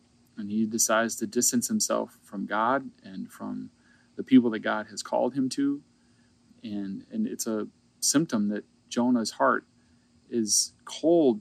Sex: male